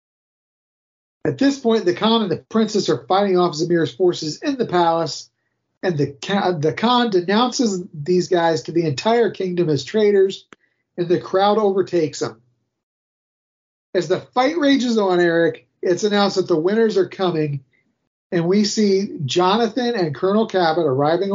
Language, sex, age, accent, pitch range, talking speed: English, male, 40-59, American, 165-225 Hz, 150 wpm